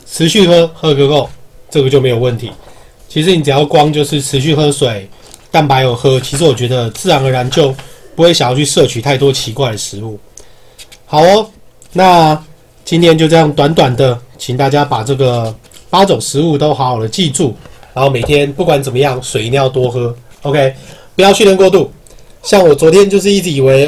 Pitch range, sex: 130-165 Hz, male